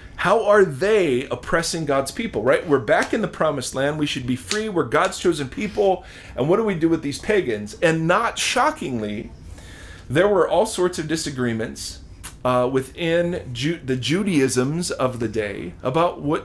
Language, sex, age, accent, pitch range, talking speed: English, male, 40-59, American, 115-170 Hz, 170 wpm